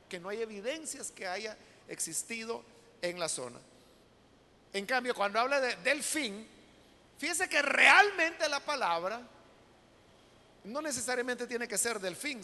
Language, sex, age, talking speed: Spanish, male, 50-69, 130 wpm